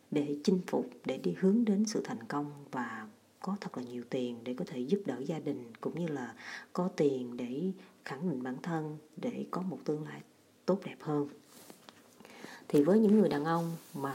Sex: female